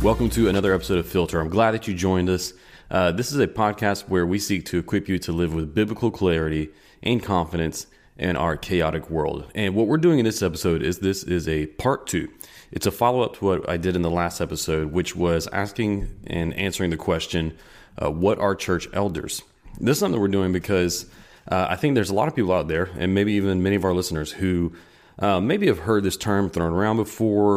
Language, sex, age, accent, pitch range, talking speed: English, male, 30-49, American, 85-105 Hz, 225 wpm